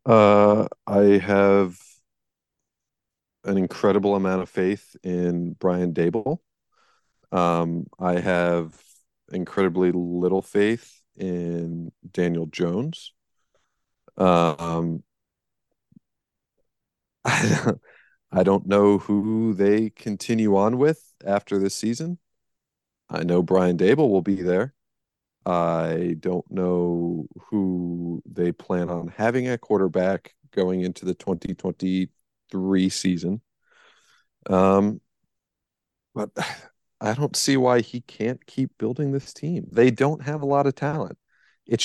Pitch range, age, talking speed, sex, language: 90-120 Hz, 40-59, 105 wpm, male, English